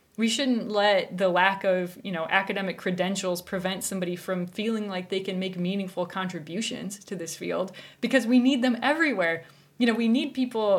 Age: 20-39